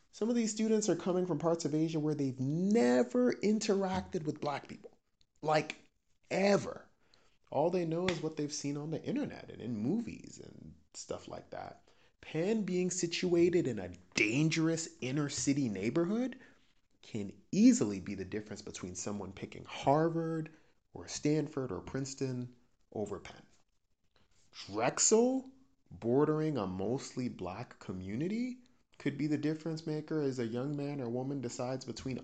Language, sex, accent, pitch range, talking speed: English, male, American, 110-165 Hz, 145 wpm